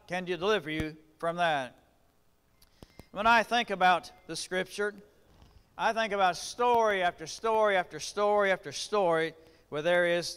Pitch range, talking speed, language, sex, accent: 160-200 Hz, 145 wpm, English, male, American